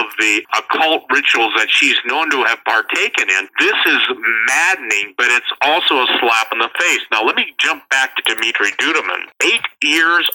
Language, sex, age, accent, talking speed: English, male, 50-69, American, 185 wpm